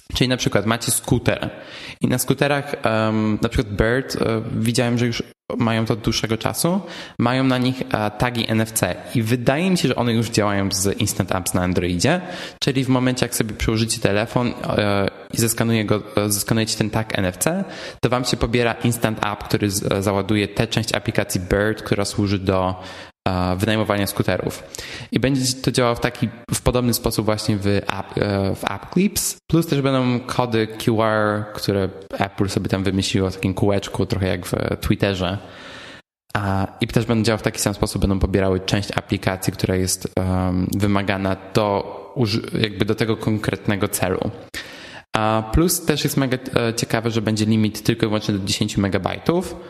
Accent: native